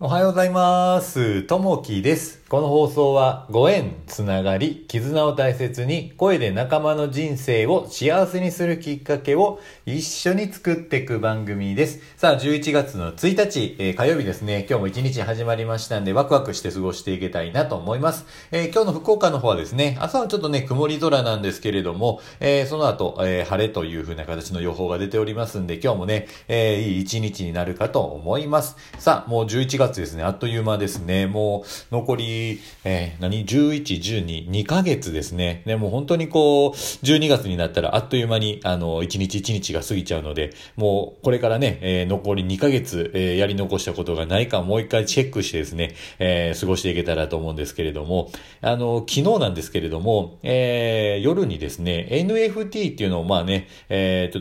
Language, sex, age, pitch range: Japanese, male, 50-69, 95-145 Hz